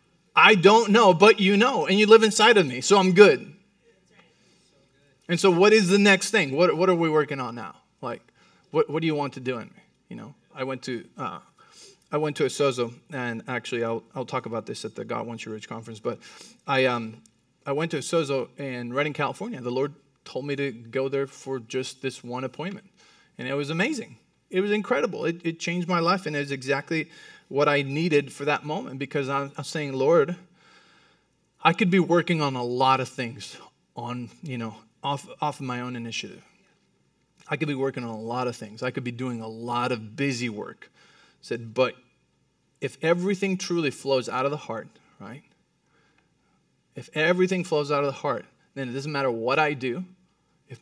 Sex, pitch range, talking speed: male, 125-165 Hz, 210 wpm